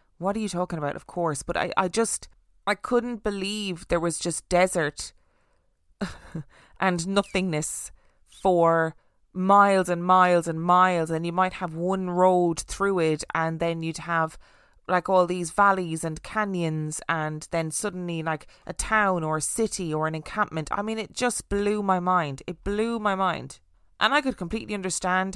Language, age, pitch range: English, 20-39, 155-185 Hz